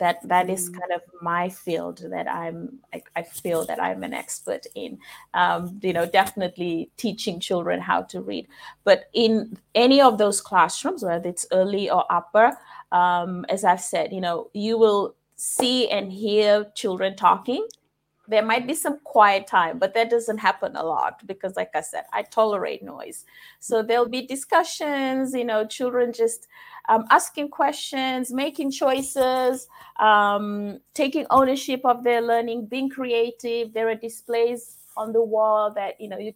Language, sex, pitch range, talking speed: English, female, 200-250 Hz, 165 wpm